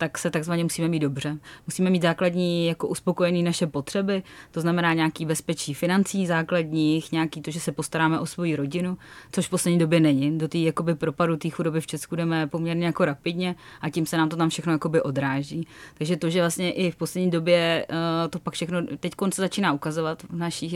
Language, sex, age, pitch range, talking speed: Czech, female, 20-39, 155-175 Hz, 200 wpm